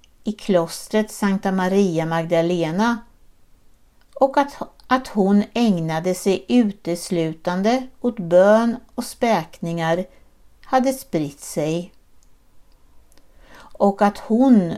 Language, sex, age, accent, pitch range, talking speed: Swedish, female, 60-79, native, 175-230 Hz, 85 wpm